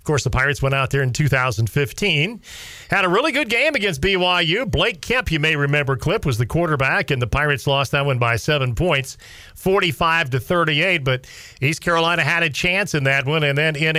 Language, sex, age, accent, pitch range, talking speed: English, male, 40-59, American, 130-165 Hz, 205 wpm